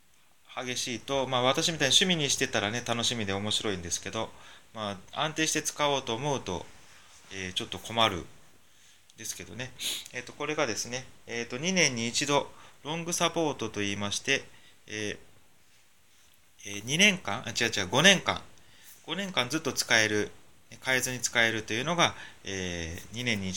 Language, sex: Japanese, male